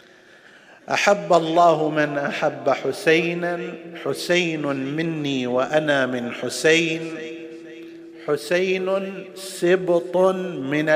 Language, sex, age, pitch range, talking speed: Arabic, male, 50-69, 145-165 Hz, 70 wpm